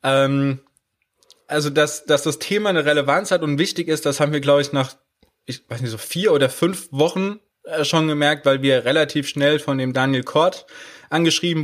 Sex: male